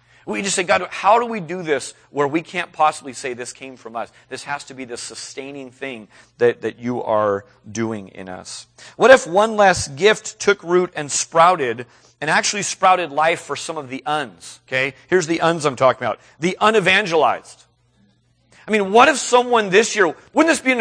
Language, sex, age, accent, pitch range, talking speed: English, male, 40-59, American, 125-185 Hz, 200 wpm